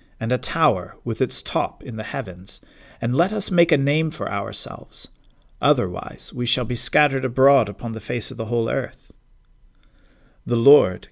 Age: 40-59